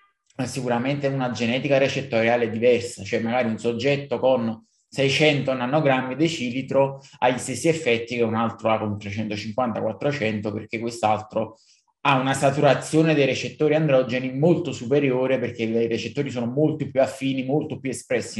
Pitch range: 120-150 Hz